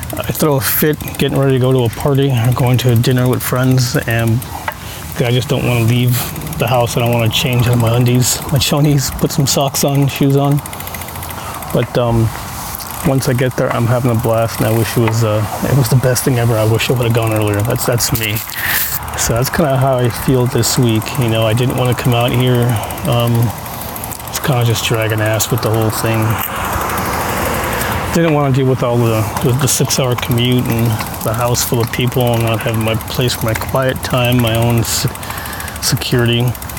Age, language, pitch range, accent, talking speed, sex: 30-49, English, 110-130 Hz, American, 215 wpm, male